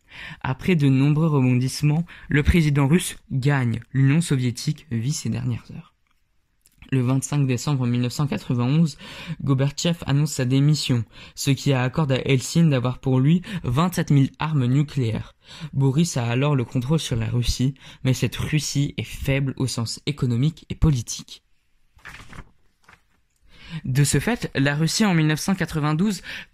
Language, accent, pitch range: French, French, 130-165 Hz